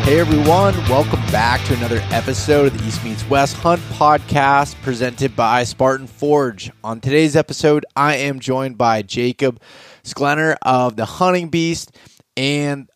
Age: 20-39